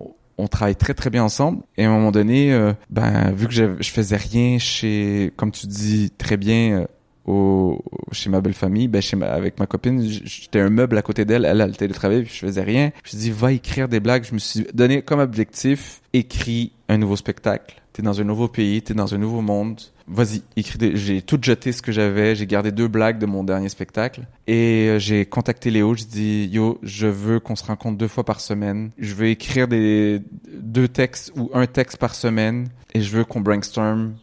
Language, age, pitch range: French, 20-39, 105-120 Hz